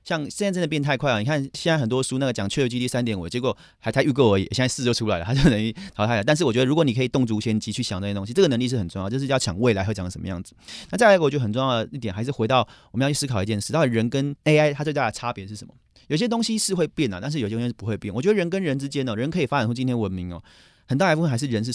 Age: 30-49